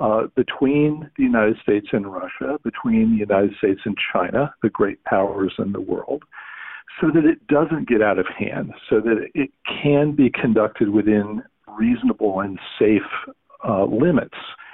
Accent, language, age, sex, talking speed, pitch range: American, English, 50-69, male, 160 wpm, 110-150 Hz